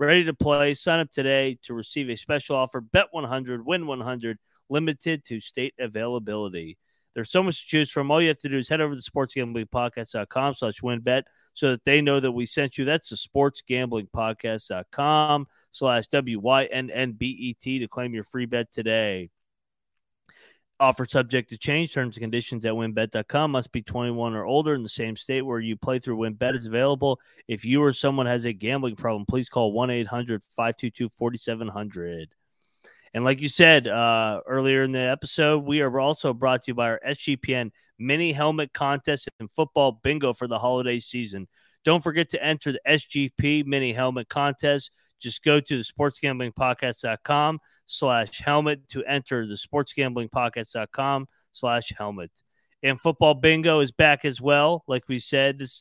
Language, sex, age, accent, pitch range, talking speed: English, male, 30-49, American, 115-145 Hz, 165 wpm